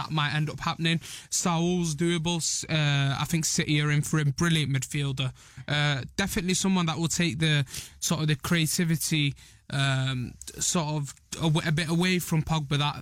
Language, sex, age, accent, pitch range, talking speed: English, male, 20-39, British, 150-165 Hz, 180 wpm